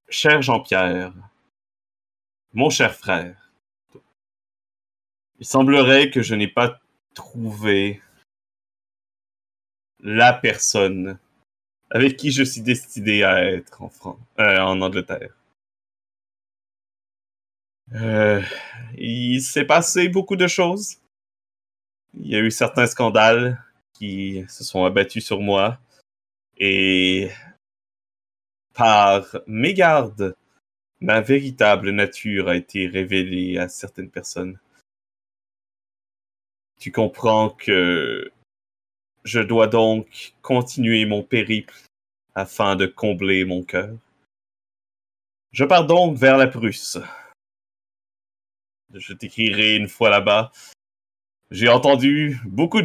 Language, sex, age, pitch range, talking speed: French, male, 30-49, 95-115 Hz, 95 wpm